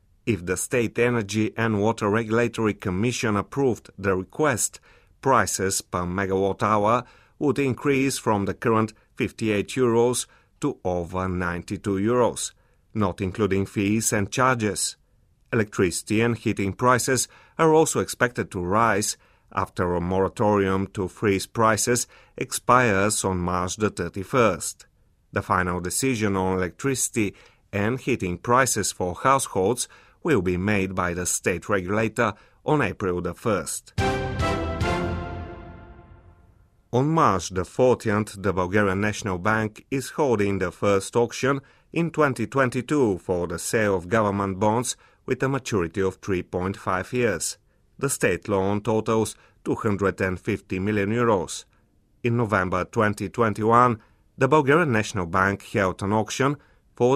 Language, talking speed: English, 120 wpm